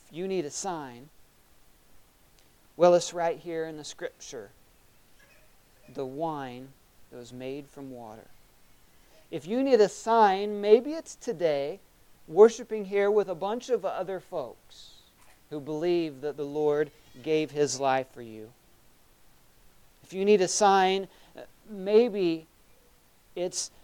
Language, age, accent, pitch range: English, 40-59, American, 130-185 Hz